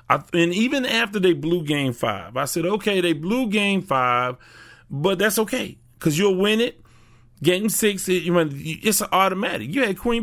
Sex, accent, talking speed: male, American, 190 wpm